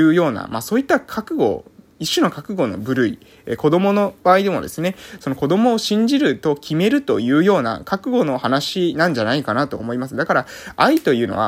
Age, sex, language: 20-39, male, Japanese